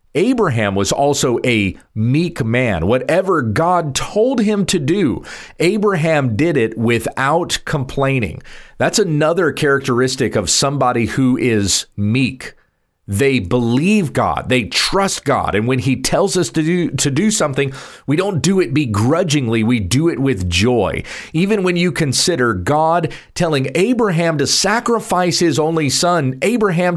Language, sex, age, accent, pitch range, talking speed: English, male, 40-59, American, 130-170 Hz, 140 wpm